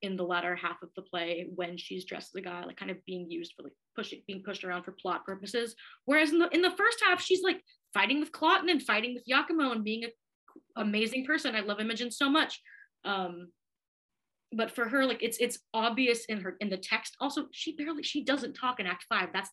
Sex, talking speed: female, 235 wpm